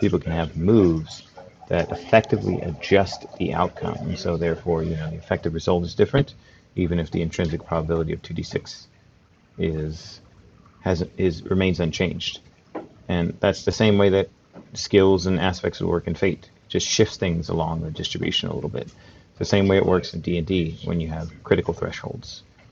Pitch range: 80-95 Hz